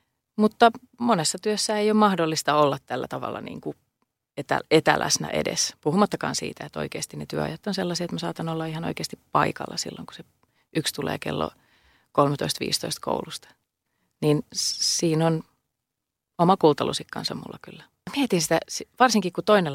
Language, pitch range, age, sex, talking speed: Finnish, 155-225 Hz, 30-49, female, 145 wpm